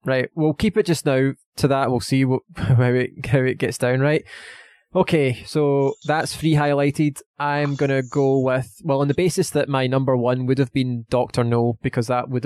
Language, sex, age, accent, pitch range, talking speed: English, male, 20-39, British, 125-140 Hz, 200 wpm